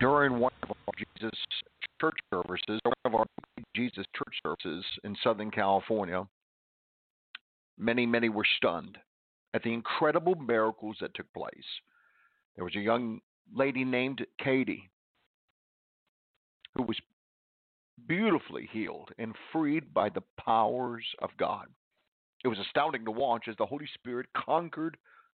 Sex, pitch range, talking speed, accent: male, 105-145 Hz, 135 wpm, American